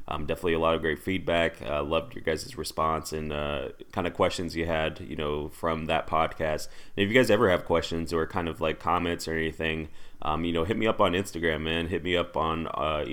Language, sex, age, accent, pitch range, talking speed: English, male, 20-39, American, 75-85 Hz, 240 wpm